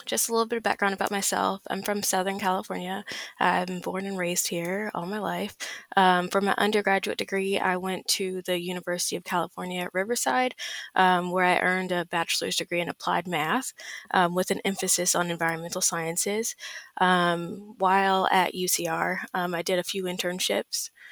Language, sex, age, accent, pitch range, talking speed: English, female, 20-39, American, 175-195 Hz, 175 wpm